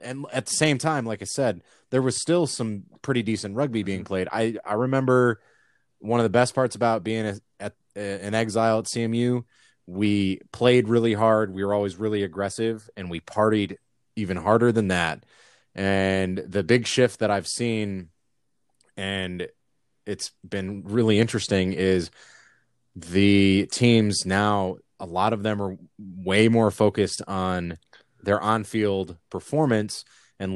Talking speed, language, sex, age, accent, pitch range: 155 wpm, English, male, 20-39, American, 95-115 Hz